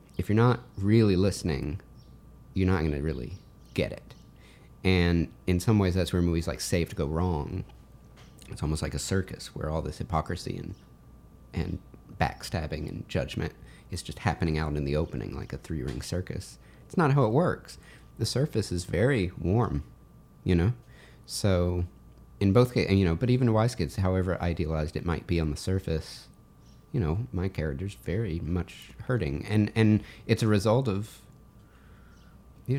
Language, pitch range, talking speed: English, 80-105 Hz, 170 wpm